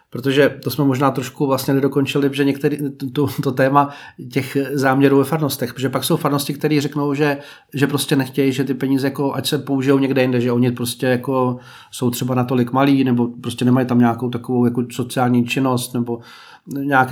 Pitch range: 125-145 Hz